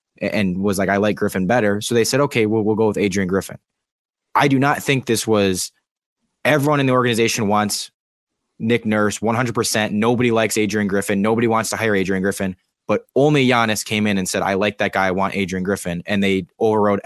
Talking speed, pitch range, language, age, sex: 210 wpm, 105-135 Hz, English, 20-39, male